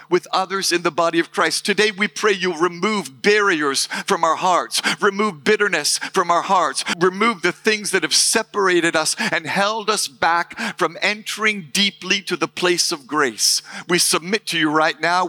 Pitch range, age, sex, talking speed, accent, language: 160-200 Hz, 50-69, male, 180 wpm, American, English